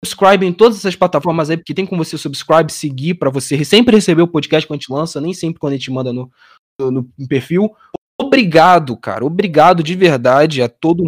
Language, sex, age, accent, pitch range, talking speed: Portuguese, male, 20-39, Brazilian, 135-185 Hz, 215 wpm